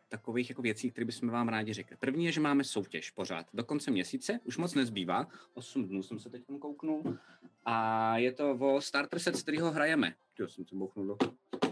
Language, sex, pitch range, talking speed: Czech, male, 110-135 Hz, 190 wpm